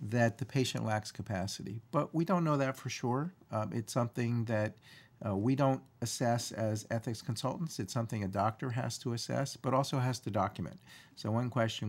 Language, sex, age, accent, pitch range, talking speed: English, male, 50-69, American, 100-125 Hz, 190 wpm